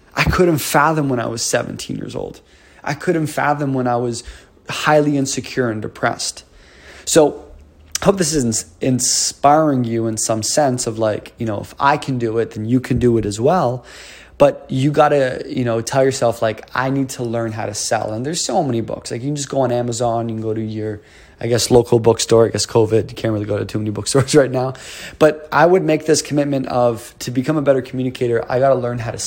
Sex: male